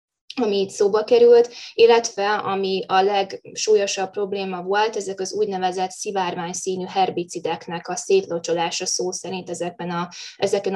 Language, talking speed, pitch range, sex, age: Hungarian, 130 wpm, 175-205 Hz, female, 20-39